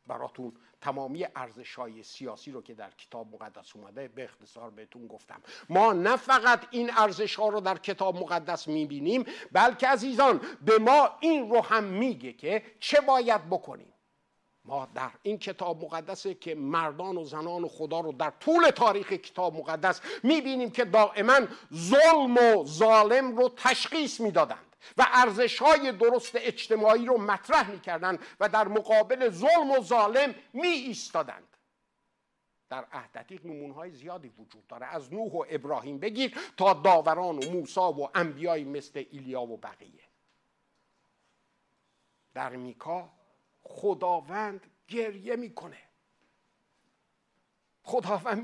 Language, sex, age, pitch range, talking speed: Persian, male, 50-69, 165-240 Hz, 135 wpm